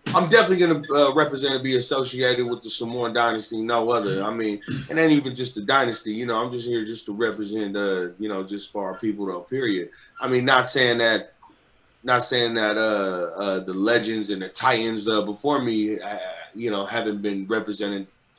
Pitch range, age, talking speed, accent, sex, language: 105-125 Hz, 20-39, 205 wpm, American, male, English